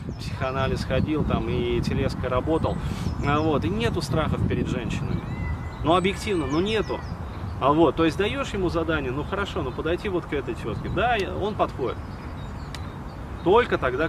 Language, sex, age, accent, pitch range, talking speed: Russian, male, 30-49, native, 110-135 Hz, 170 wpm